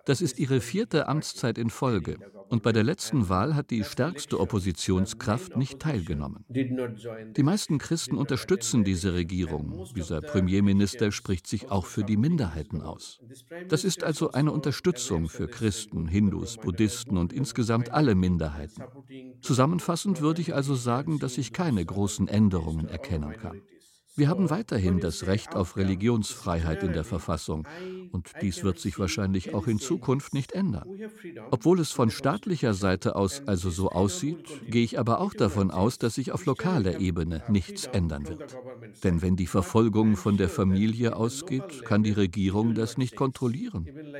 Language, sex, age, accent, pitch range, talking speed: German, male, 50-69, German, 95-135 Hz, 155 wpm